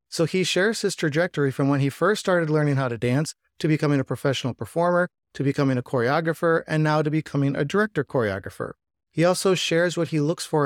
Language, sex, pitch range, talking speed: English, male, 140-170 Hz, 210 wpm